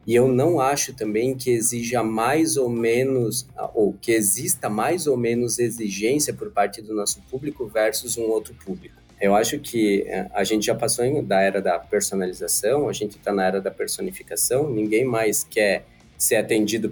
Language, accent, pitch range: Portuguese, Brazilian, 110-140 Hz